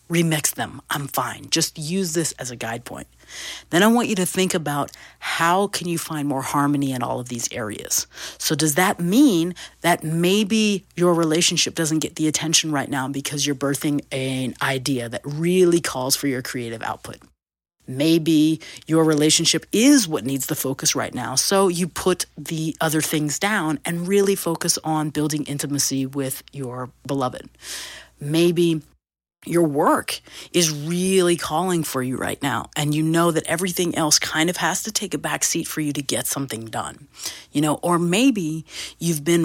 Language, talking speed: English, 180 wpm